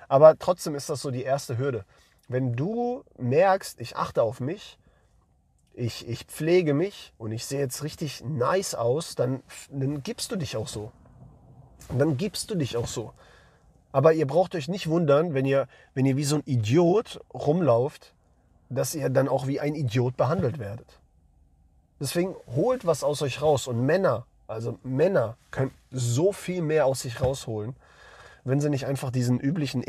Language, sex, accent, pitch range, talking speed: English, male, German, 115-145 Hz, 175 wpm